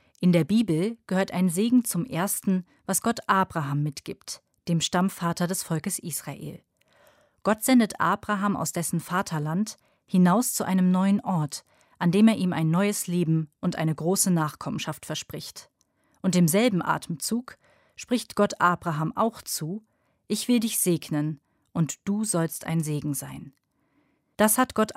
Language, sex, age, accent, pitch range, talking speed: German, female, 30-49, German, 160-200 Hz, 145 wpm